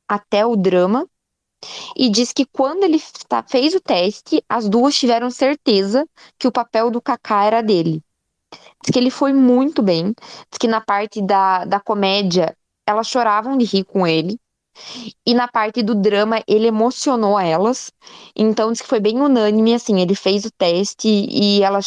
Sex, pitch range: female, 190-240 Hz